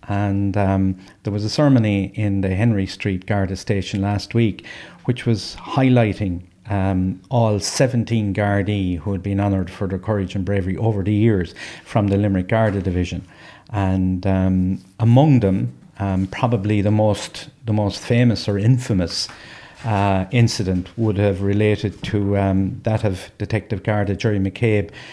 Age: 50-69